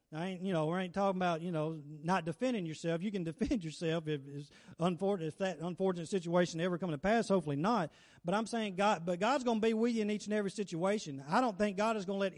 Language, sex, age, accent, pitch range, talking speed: English, male, 40-59, American, 155-195 Hz, 255 wpm